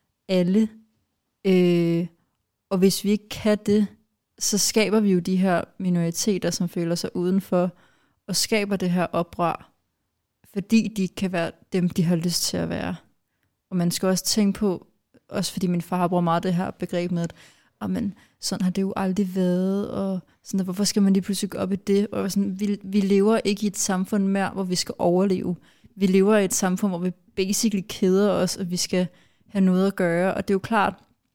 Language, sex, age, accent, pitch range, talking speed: Danish, female, 30-49, native, 180-205 Hz, 205 wpm